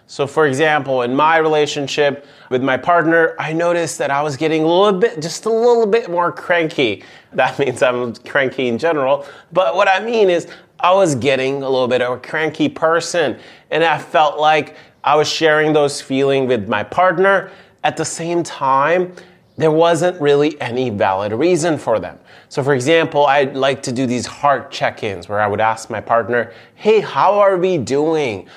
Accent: American